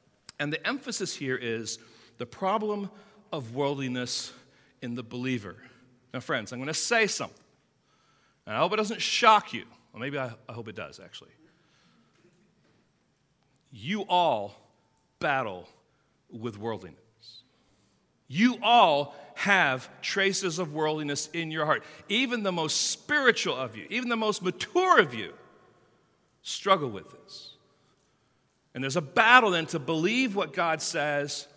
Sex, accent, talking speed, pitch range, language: male, American, 135 wpm, 125-170 Hz, English